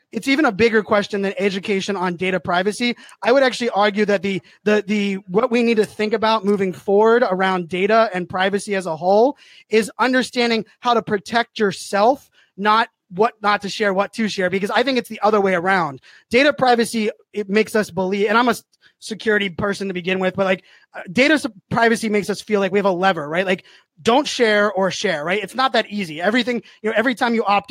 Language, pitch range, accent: English, 195-230 Hz, American